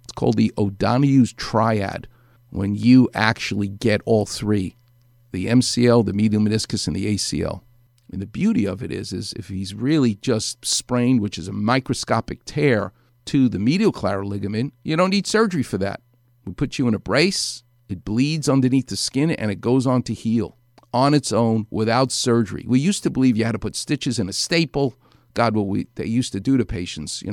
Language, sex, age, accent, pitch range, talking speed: English, male, 50-69, American, 105-125 Hz, 195 wpm